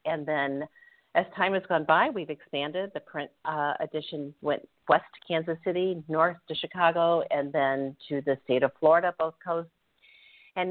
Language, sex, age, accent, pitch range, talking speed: English, female, 50-69, American, 135-180 Hz, 175 wpm